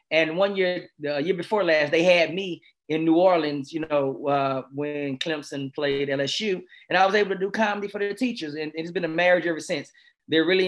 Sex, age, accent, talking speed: male, 20-39, American, 220 wpm